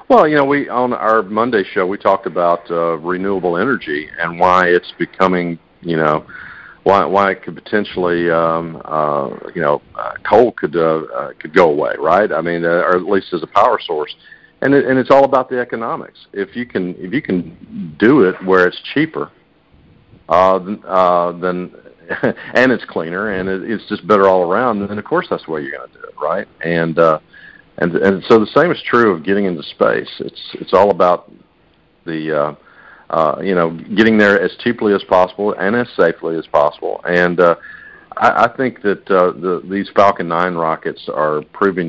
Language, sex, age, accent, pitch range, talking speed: English, male, 50-69, American, 85-100 Hz, 200 wpm